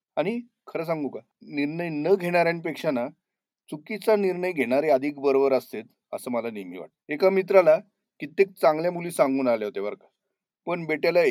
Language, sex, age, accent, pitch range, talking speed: Marathi, male, 40-59, native, 135-185 Hz, 150 wpm